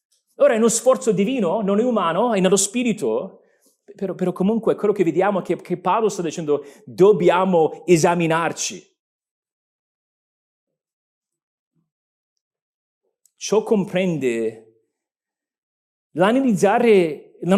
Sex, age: male, 40-59